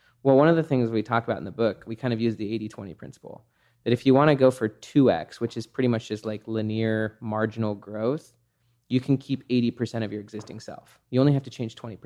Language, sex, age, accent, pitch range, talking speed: English, male, 20-39, American, 115-130 Hz, 240 wpm